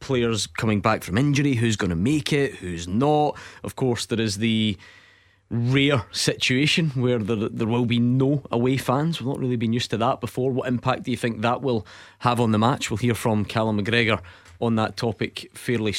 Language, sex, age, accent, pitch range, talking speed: English, male, 20-39, British, 110-135 Hz, 205 wpm